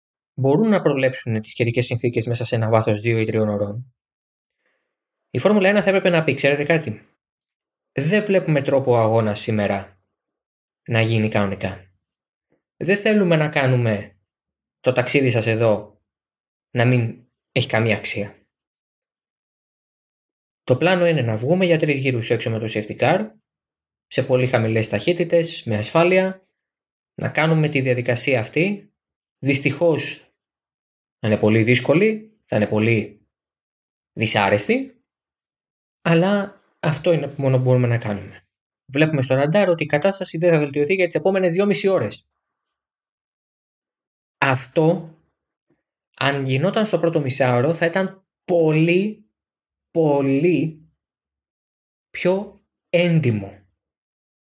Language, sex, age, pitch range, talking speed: Greek, male, 20-39, 110-170 Hz, 125 wpm